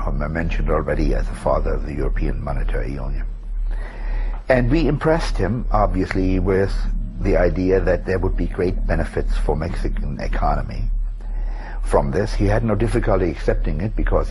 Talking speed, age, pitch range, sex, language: 160 wpm, 60-79, 95-110 Hz, male, English